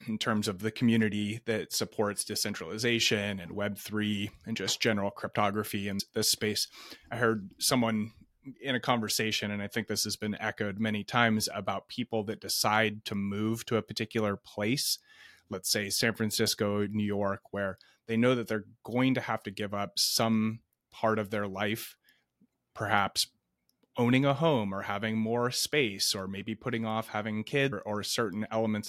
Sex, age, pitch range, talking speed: male, 30-49, 105-115 Hz, 170 wpm